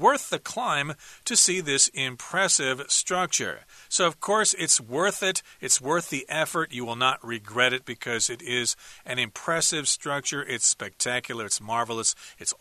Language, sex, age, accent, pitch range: Chinese, male, 40-59, American, 125-175 Hz